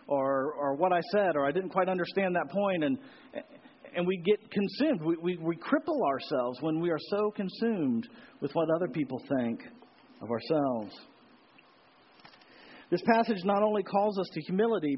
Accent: American